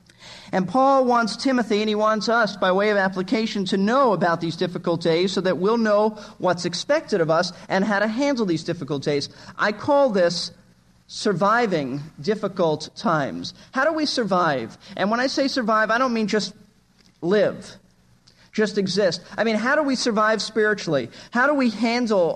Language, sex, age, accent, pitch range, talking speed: English, male, 50-69, American, 170-220 Hz, 175 wpm